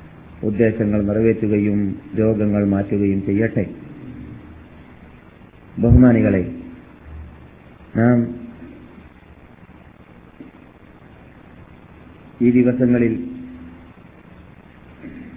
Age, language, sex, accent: 50-69, Malayalam, male, native